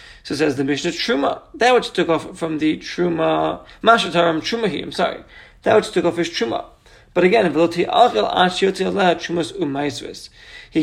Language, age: English, 40-59